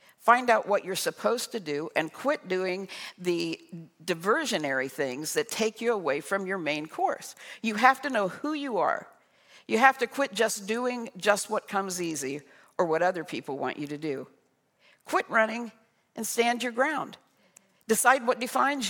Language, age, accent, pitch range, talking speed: English, 60-79, American, 180-250 Hz, 175 wpm